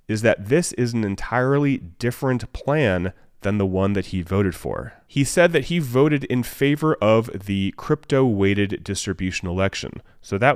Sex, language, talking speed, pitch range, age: male, English, 165 wpm, 90-120 Hz, 30-49